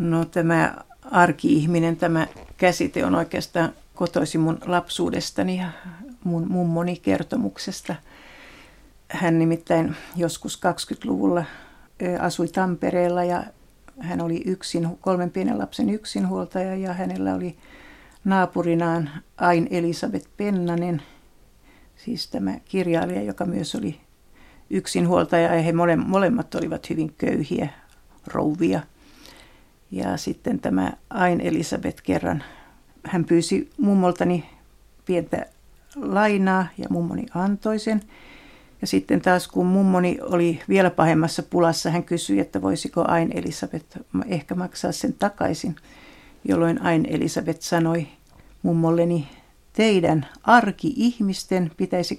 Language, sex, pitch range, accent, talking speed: Finnish, female, 165-185 Hz, native, 105 wpm